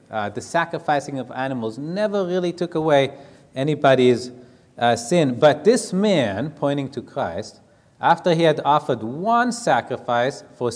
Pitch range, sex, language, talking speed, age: 120-165 Hz, male, English, 140 wpm, 30-49